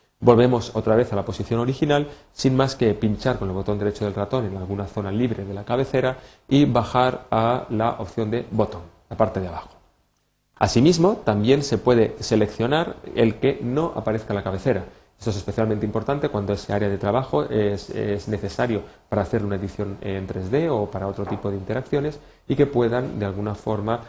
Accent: Spanish